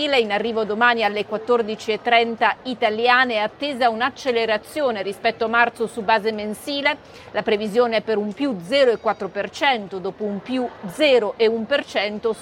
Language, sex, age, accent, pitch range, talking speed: Italian, female, 40-59, native, 215-260 Hz, 125 wpm